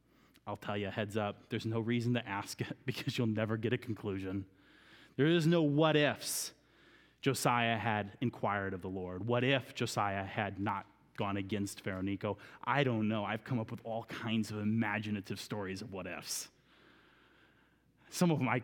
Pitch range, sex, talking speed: 105-140 Hz, male, 180 wpm